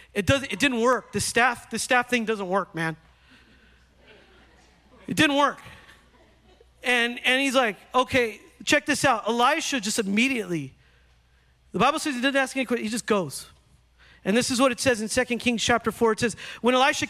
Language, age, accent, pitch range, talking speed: English, 40-59, American, 215-295 Hz, 185 wpm